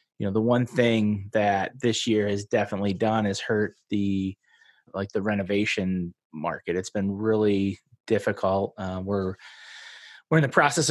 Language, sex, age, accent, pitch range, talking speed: English, male, 20-39, American, 100-115 Hz, 155 wpm